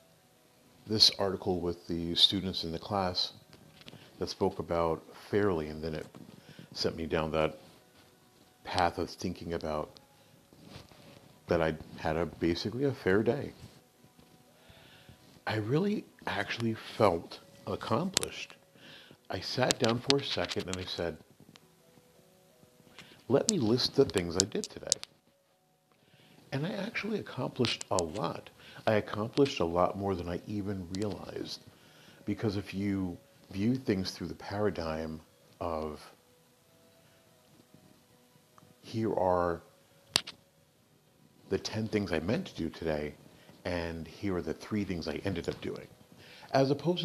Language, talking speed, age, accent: English, 125 wpm, 50-69, American